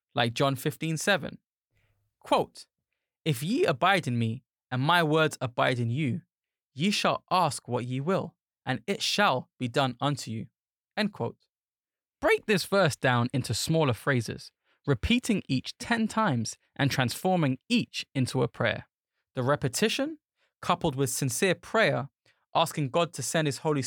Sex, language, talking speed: male, English, 150 wpm